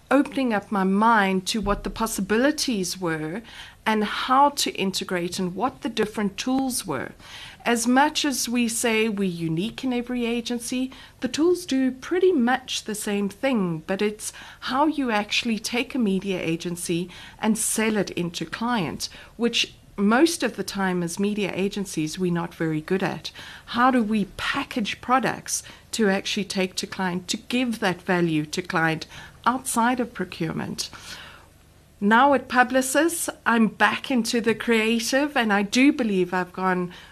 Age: 60-79